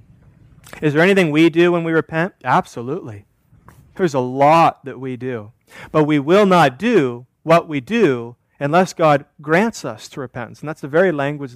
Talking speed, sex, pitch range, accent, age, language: 175 wpm, male, 145-205 Hz, American, 30-49, English